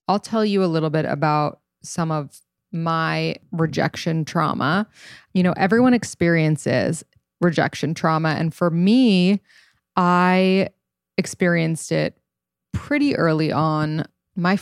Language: English